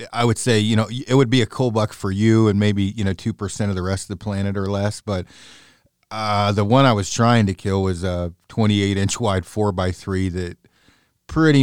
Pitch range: 95-115 Hz